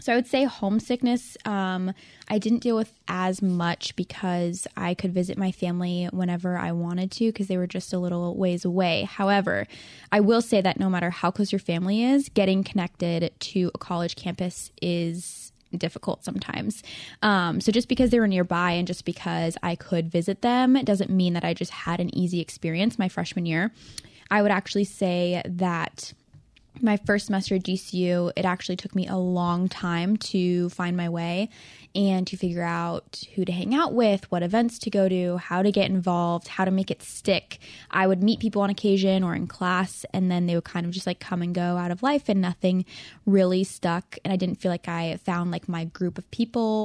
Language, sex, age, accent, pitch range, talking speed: English, female, 10-29, American, 175-200 Hz, 205 wpm